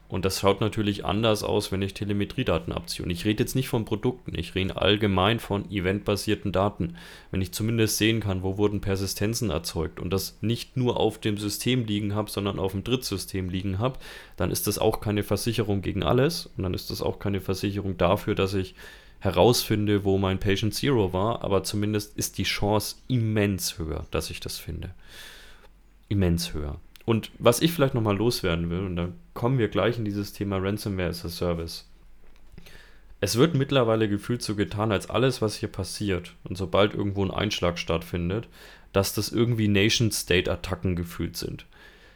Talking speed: 175 wpm